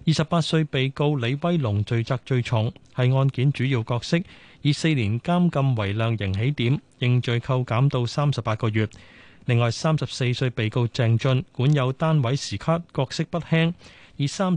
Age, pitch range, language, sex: 30-49, 115-145 Hz, Chinese, male